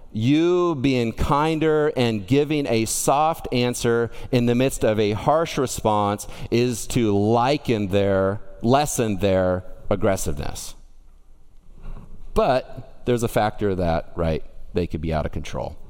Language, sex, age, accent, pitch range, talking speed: English, male, 40-59, American, 105-150 Hz, 130 wpm